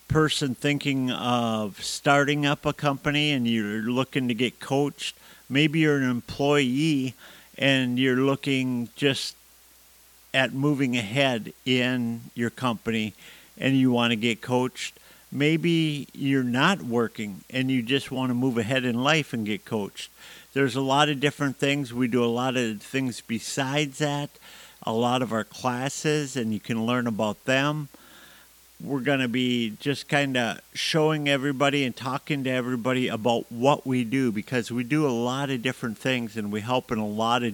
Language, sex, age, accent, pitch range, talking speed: English, male, 50-69, American, 120-145 Hz, 170 wpm